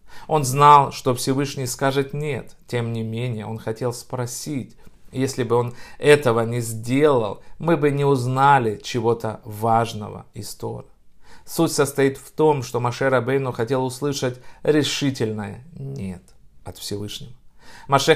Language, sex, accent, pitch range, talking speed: Russian, male, native, 115-140 Hz, 130 wpm